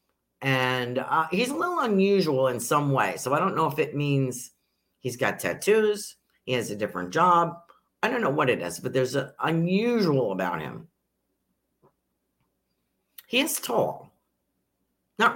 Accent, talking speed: American, 155 wpm